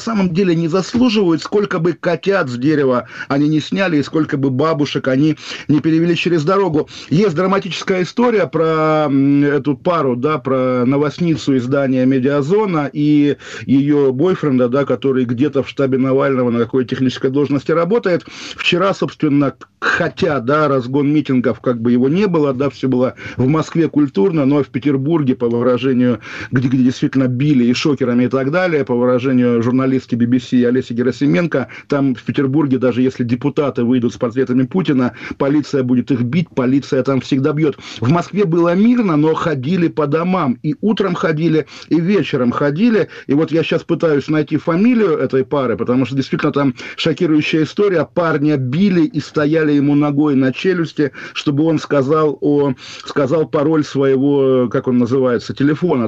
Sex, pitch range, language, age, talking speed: male, 130-160 Hz, Russian, 50-69, 160 wpm